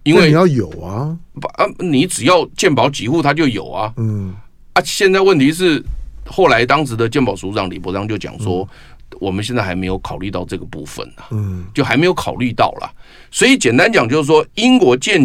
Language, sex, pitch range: Chinese, male, 100-145 Hz